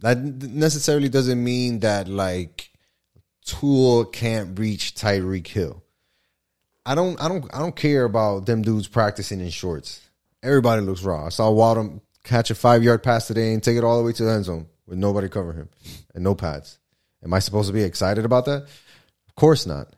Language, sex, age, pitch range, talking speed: English, male, 20-39, 100-135 Hz, 190 wpm